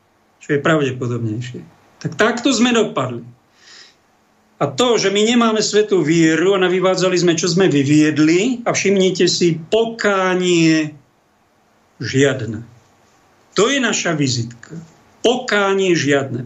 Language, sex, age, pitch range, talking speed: Slovak, male, 50-69, 145-180 Hz, 115 wpm